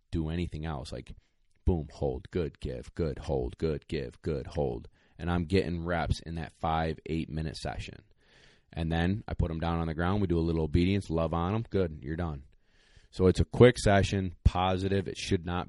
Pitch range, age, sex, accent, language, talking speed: 80-95 Hz, 20-39, male, American, English, 205 wpm